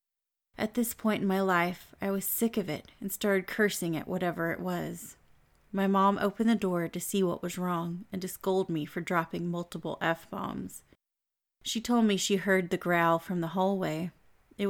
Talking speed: 190 wpm